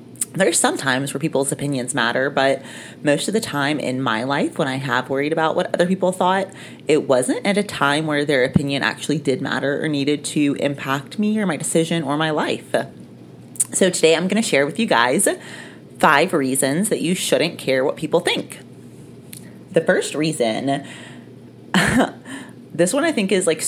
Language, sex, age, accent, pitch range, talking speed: English, female, 30-49, American, 135-175 Hz, 185 wpm